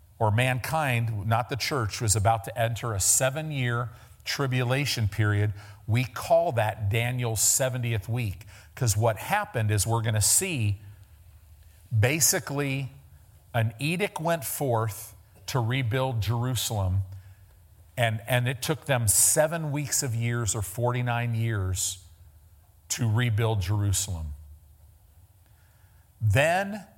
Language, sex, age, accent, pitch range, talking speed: English, male, 50-69, American, 100-130 Hz, 115 wpm